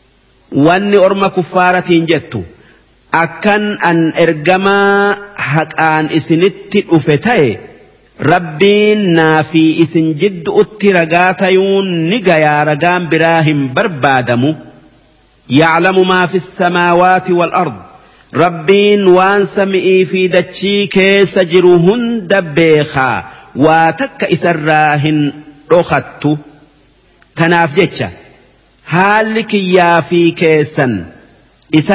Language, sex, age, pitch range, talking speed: Arabic, male, 50-69, 160-190 Hz, 70 wpm